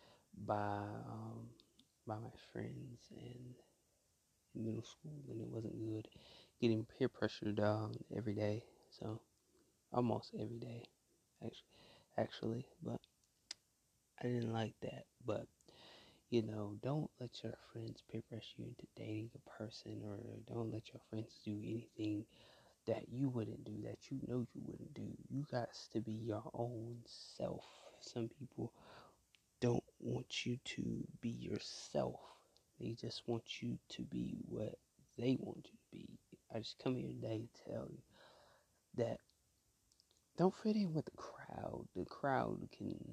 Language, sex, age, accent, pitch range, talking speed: English, male, 20-39, American, 110-125 Hz, 150 wpm